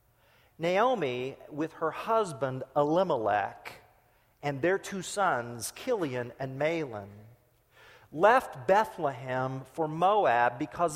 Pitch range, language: 130-195 Hz, English